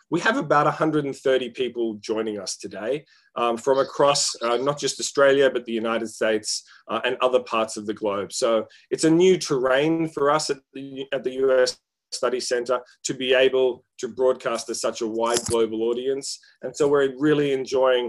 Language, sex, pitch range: English, male, 115-140 Hz